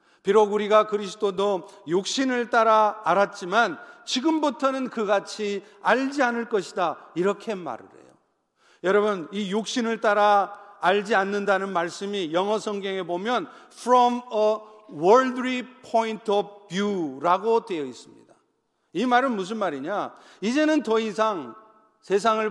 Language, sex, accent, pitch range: Korean, male, native, 200-240 Hz